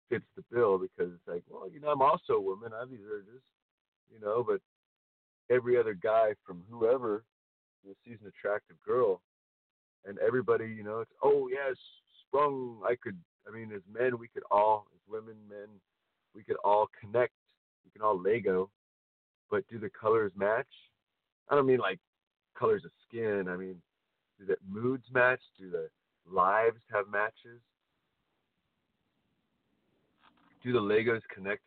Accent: American